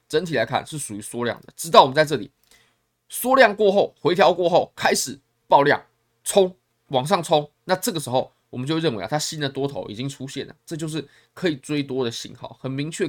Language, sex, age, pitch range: Chinese, male, 20-39, 120-160 Hz